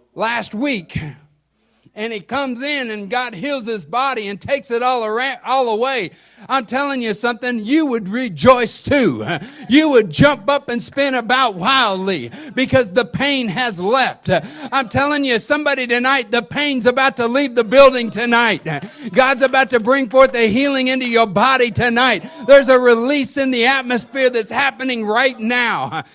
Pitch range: 170-255 Hz